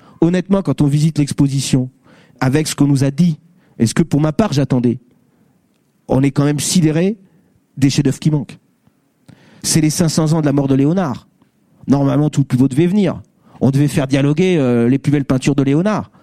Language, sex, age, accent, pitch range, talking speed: French, male, 40-59, French, 140-185 Hz, 205 wpm